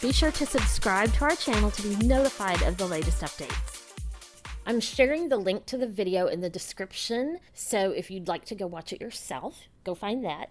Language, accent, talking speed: English, American, 205 wpm